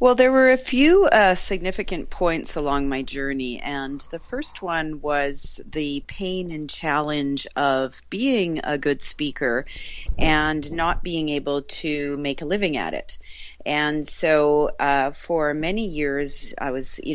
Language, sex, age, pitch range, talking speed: English, female, 40-59, 140-170 Hz, 150 wpm